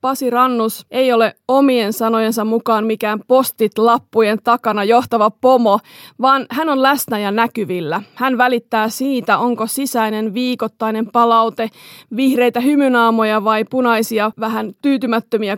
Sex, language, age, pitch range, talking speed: female, Finnish, 30-49, 215-245 Hz, 120 wpm